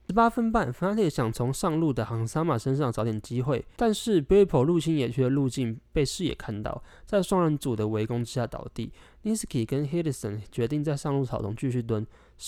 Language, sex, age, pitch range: Chinese, male, 20-39, 115-155 Hz